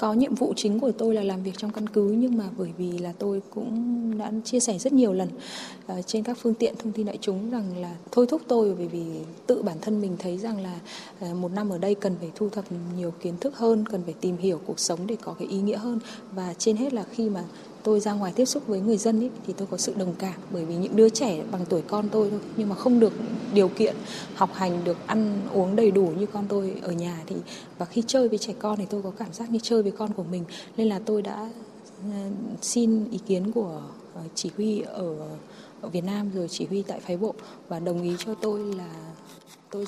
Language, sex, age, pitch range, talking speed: Vietnamese, female, 20-39, 185-220 Hz, 245 wpm